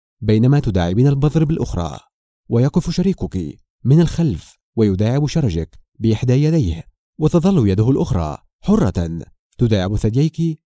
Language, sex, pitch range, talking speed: Arabic, male, 105-165 Hz, 100 wpm